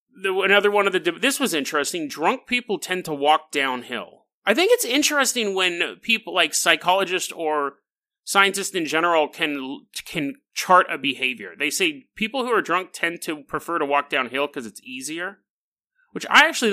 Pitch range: 150-200 Hz